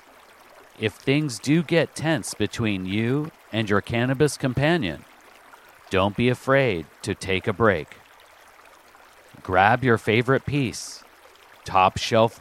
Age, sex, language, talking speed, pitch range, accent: 40-59, male, English, 110 wpm, 100-135 Hz, American